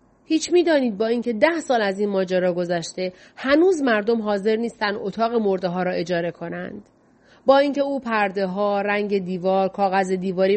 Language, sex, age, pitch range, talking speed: Persian, female, 30-49, 190-255 Hz, 170 wpm